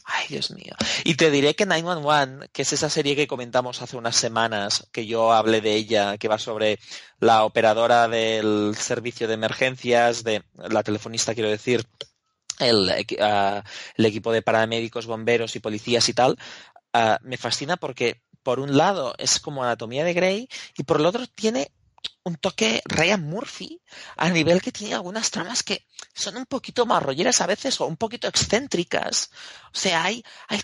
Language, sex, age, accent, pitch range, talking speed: Spanish, male, 30-49, Spanish, 115-160 Hz, 175 wpm